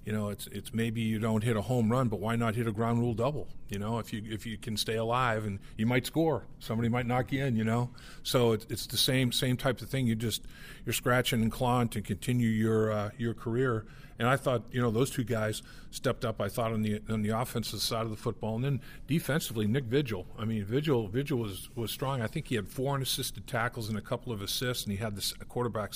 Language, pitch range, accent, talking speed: English, 110-125 Hz, American, 255 wpm